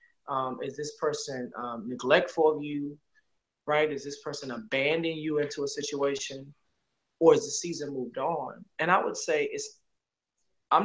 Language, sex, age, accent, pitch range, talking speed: English, male, 20-39, American, 135-195 Hz, 160 wpm